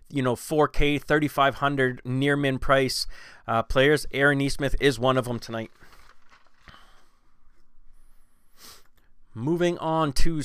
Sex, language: male, English